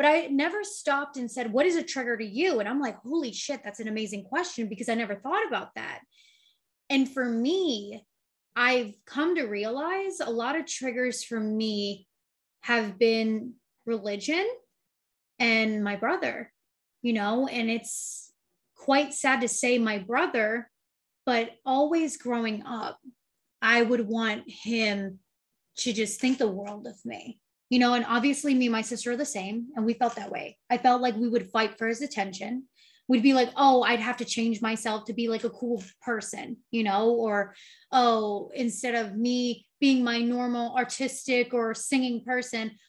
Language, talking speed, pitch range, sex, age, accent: English, 175 wpm, 220-260 Hz, female, 20-39, American